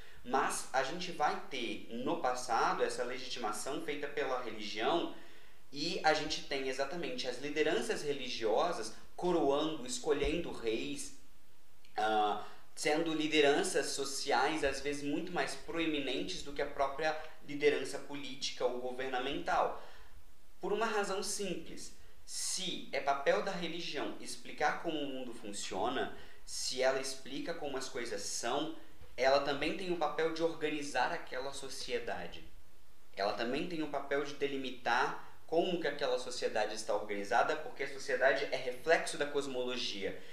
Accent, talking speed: Brazilian, 135 wpm